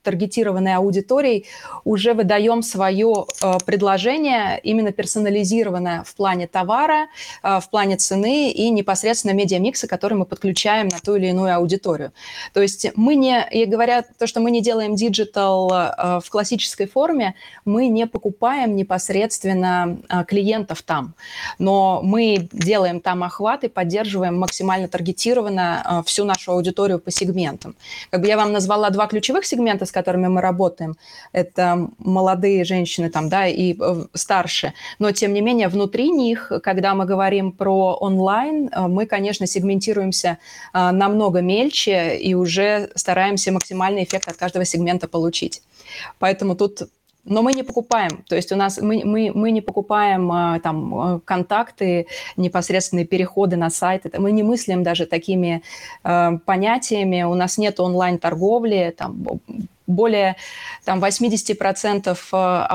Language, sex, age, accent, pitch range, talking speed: Russian, female, 20-39, native, 180-215 Hz, 125 wpm